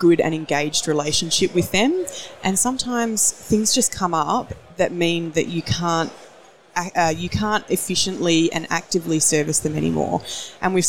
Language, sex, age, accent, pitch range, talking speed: English, female, 20-39, Australian, 155-185 Hz, 155 wpm